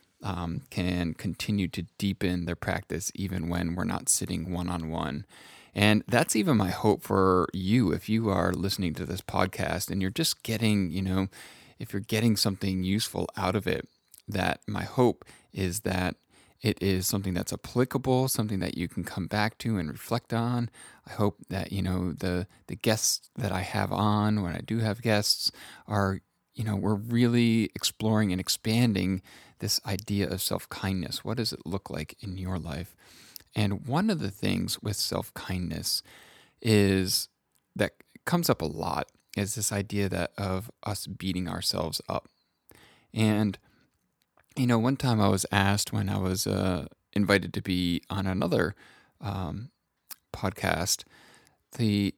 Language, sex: English, male